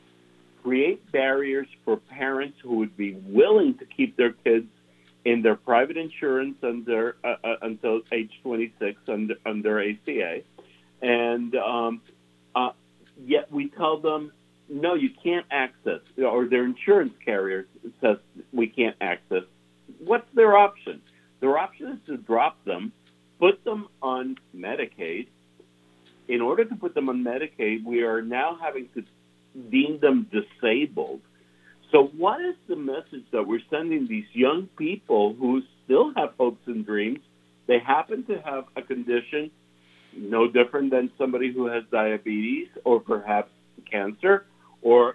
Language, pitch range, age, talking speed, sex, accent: English, 105-160 Hz, 60-79, 140 wpm, male, American